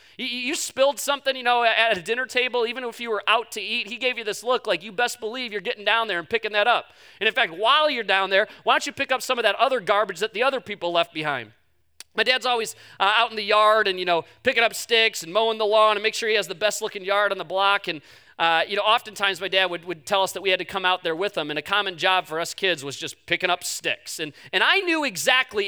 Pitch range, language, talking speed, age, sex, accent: 200-260 Hz, English, 285 wpm, 40-59, male, American